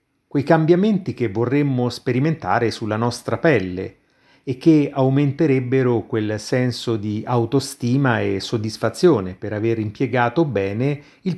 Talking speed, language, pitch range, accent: 115 wpm, Italian, 110-140 Hz, native